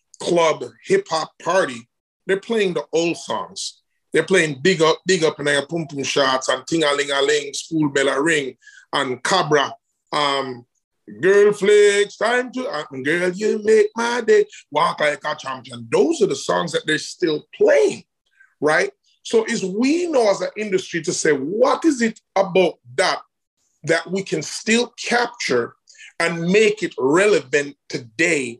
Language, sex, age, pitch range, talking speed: English, male, 30-49, 155-255 Hz, 155 wpm